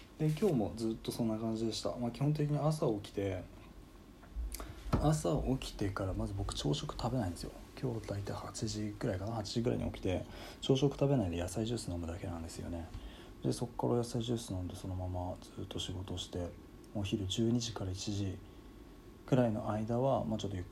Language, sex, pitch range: Japanese, male, 90-115 Hz